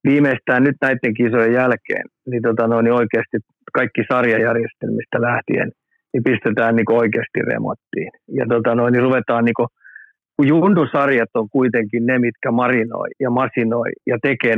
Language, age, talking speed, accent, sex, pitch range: Finnish, 50-69, 150 wpm, native, male, 120-135 Hz